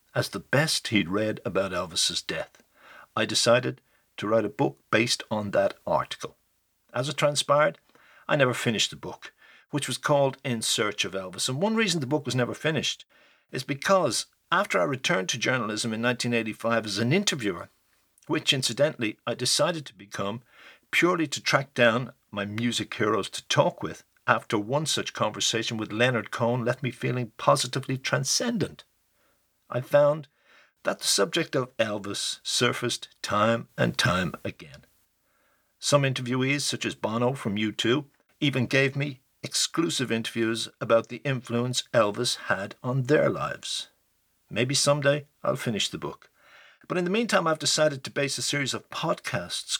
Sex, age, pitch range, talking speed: male, 60-79, 115-145 Hz, 160 wpm